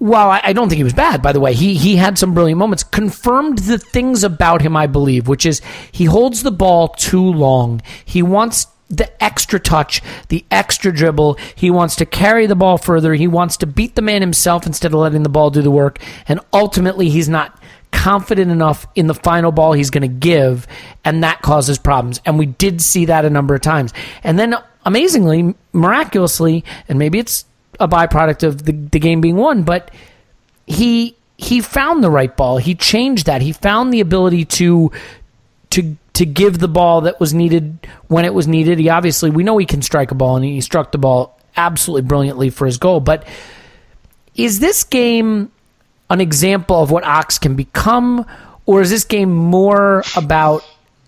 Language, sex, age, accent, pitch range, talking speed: English, male, 40-59, American, 150-195 Hz, 195 wpm